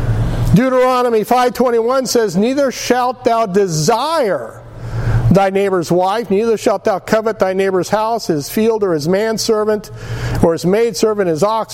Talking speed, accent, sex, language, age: 150 wpm, American, male, English, 50-69